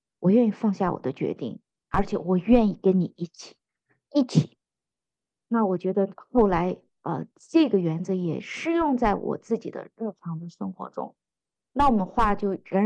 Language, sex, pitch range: Chinese, female, 185-245 Hz